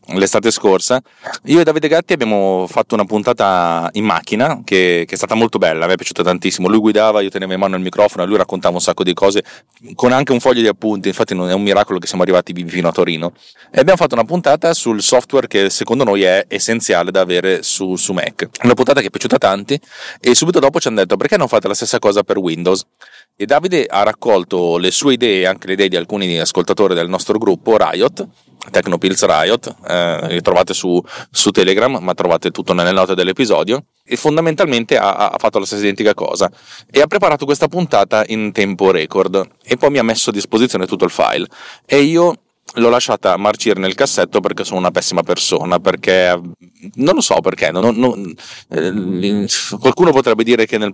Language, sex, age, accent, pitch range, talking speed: Italian, male, 30-49, native, 95-125 Hz, 205 wpm